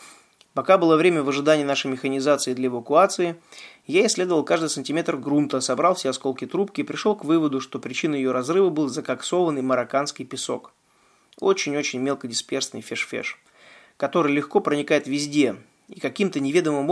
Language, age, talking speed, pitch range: Russian, 20-39, 140 wpm, 130-165 Hz